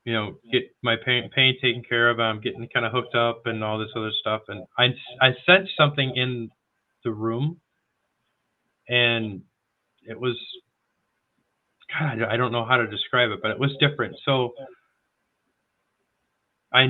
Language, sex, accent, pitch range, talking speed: English, male, American, 110-135 Hz, 160 wpm